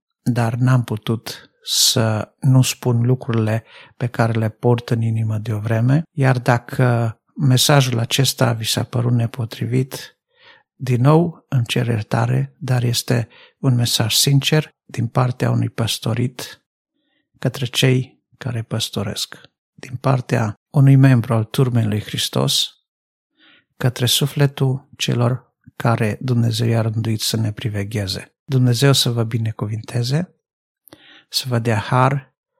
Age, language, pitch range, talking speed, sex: 50-69, Romanian, 115-130 Hz, 125 wpm, male